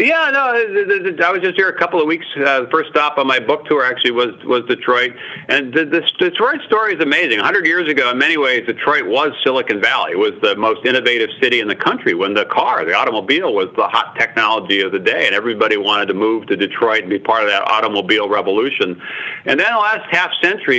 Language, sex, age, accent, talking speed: English, male, 50-69, American, 230 wpm